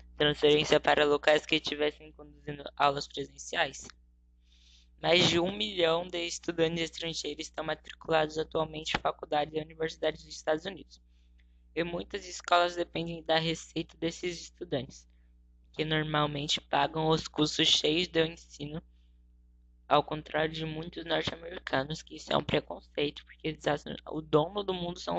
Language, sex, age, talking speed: Portuguese, female, 10-29, 145 wpm